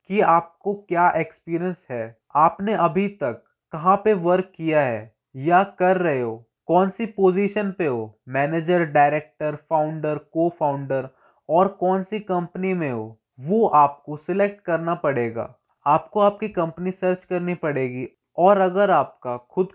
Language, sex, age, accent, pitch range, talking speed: Hindi, male, 20-39, native, 150-195 Hz, 160 wpm